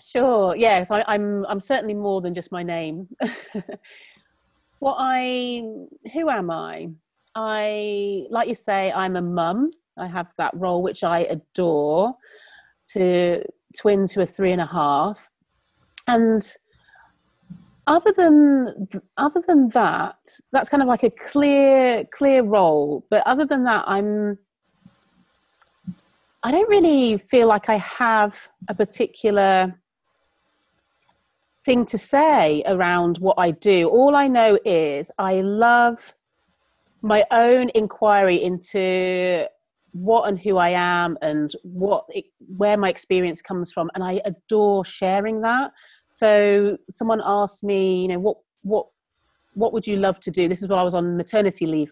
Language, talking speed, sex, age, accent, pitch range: English, 145 wpm, female, 30-49, British, 185-245 Hz